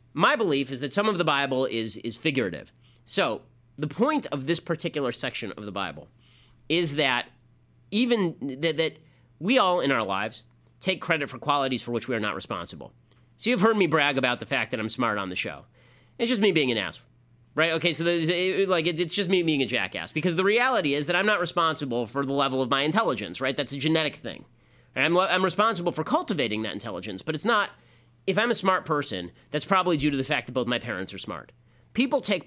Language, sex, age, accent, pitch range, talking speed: English, male, 30-49, American, 125-180 Hz, 220 wpm